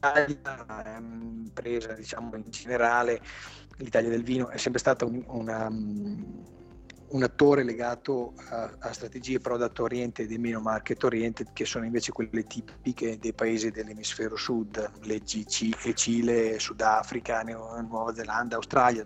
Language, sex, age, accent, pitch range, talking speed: Italian, male, 30-49, native, 110-125 Hz, 125 wpm